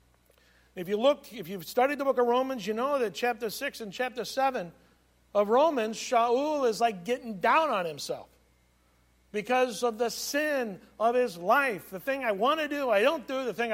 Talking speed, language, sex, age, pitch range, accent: 195 wpm, English, male, 50-69, 185-250 Hz, American